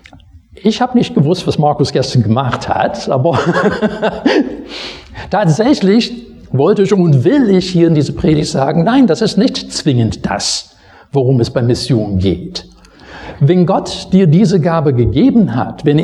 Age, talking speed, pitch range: 60-79, 150 wpm, 110-180 Hz